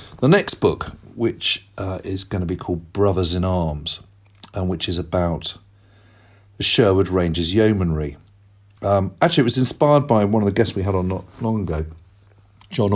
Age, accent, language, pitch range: 40-59, British, English, 90-110 Hz